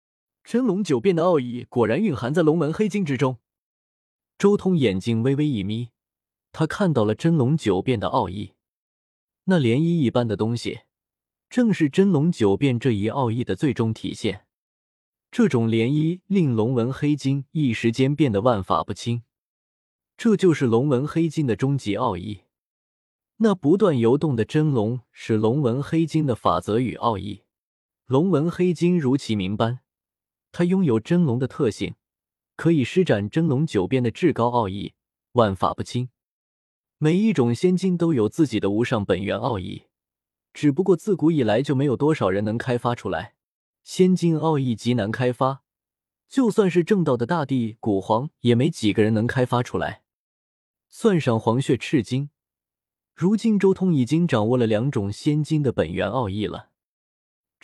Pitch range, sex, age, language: 110-165 Hz, male, 20-39, Chinese